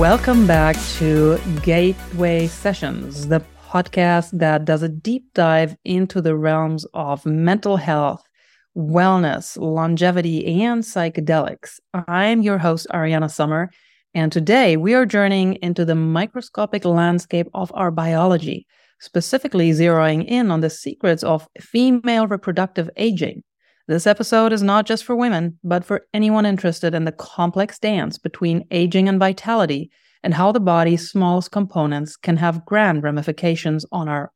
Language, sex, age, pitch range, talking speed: English, female, 40-59, 160-195 Hz, 140 wpm